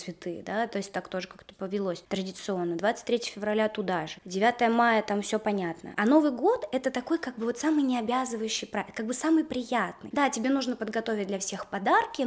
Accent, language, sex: native, Russian, female